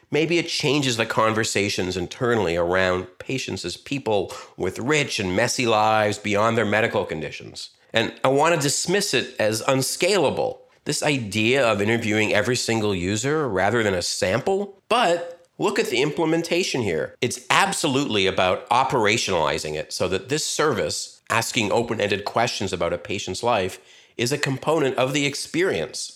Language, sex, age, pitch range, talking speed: English, male, 50-69, 105-145 Hz, 150 wpm